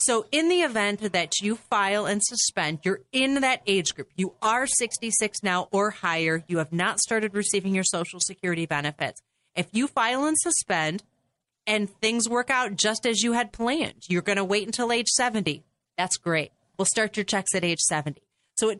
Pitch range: 175-235 Hz